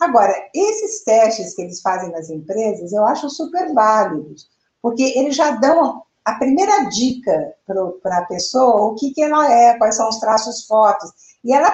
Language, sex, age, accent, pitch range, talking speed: Portuguese, female, 60-79, Brazilian, 215-275 Hz, 175 wpm